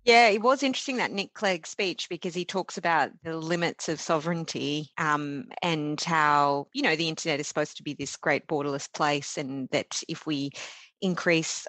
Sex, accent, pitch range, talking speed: female, Australian, 150-180 Hz, 185 wpm